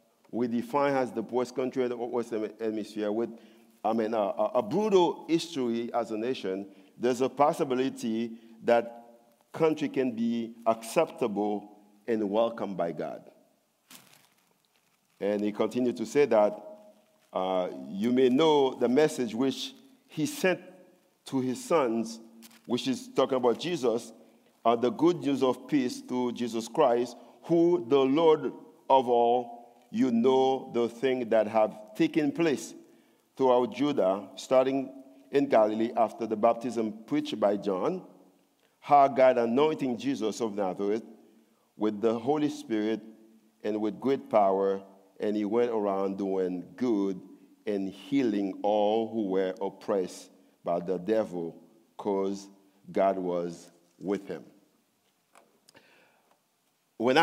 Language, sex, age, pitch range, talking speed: English, male, 50-69, 105-135 Hz, 130 wpm